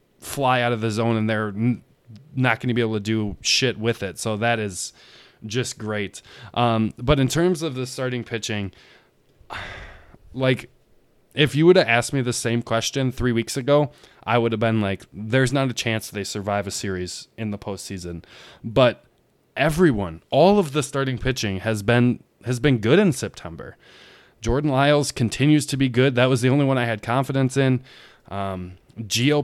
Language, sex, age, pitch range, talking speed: English, male, 20-39, 110-135 Hz, 185 wpm